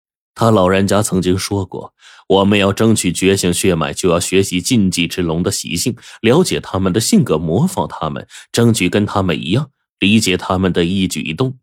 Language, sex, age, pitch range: Chinese, male, 20-39, 85-110 Hz